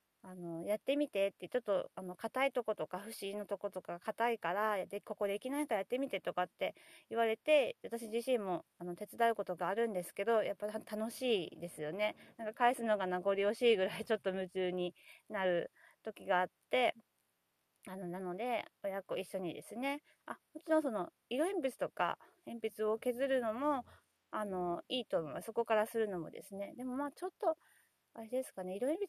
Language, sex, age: Japanese, female, 30-49